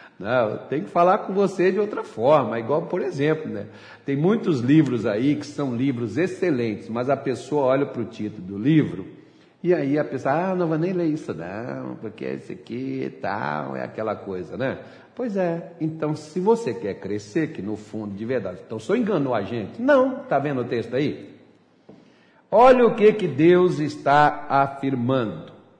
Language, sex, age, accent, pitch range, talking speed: Portuguese, male, 60-79, Brazilian, 115-175 Hz, 185 wpm